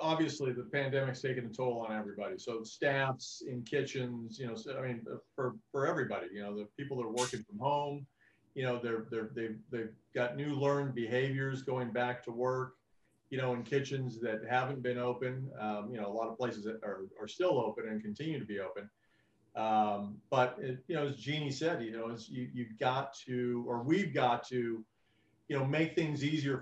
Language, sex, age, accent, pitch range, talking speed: English, male, 40-59, American, 110-135 Hz, 205 wpm